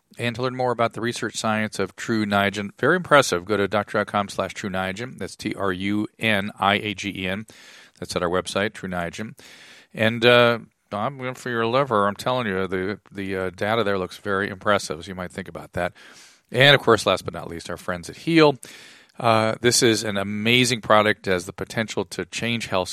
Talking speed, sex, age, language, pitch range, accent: 210 wpm, male, 40-59, English, 100-125 Hz, American